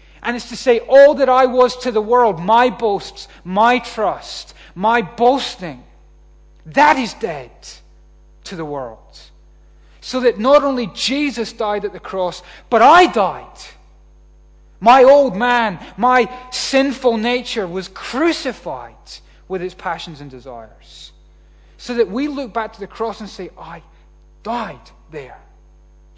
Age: 30-49